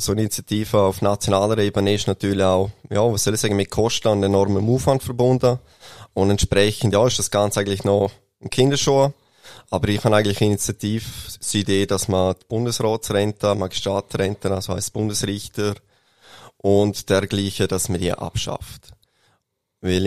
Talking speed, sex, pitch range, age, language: 160 wpm, male, 100-115 Hz, 20-39, German